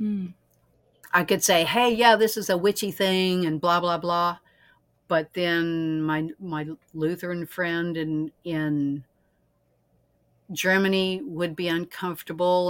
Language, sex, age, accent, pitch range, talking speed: English, female, 60-79, American, 150-180 Hz, 125 wpm